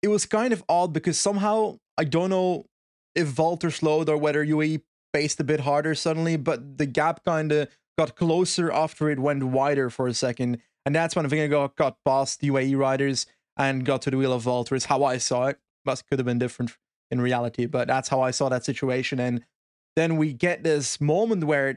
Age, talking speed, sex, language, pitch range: 20-39, 210 wpm, male, English, 140-175 Hz